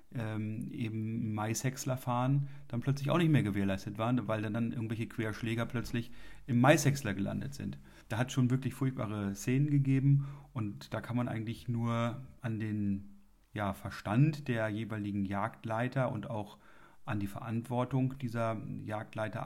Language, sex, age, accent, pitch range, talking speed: German, male, 30-49, German, 105-125 Hz, 140 wpm